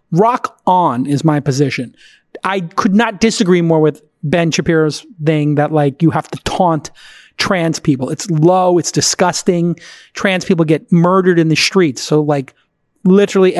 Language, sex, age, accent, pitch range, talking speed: English, male, 30-49, American, 150-180 Hz, 160 wpm